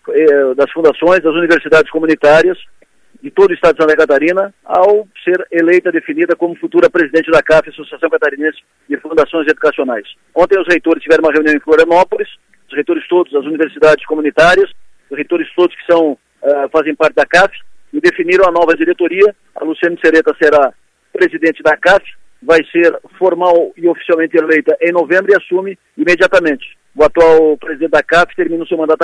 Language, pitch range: Portuguese, 155-185 Hz